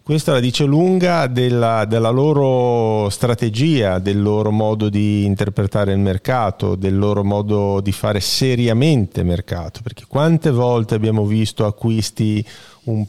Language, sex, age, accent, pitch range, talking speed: Italian, male, 30-49, native, 110-135 Hz, 140 wpm